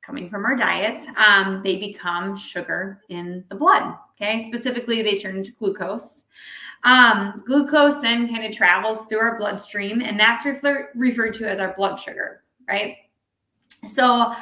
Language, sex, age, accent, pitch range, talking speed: English, female, 20-39, American, 195-240 Hz, 145 wpm